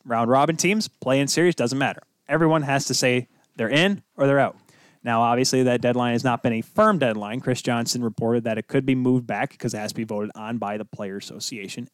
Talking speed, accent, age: 225 wpm, American, 20-39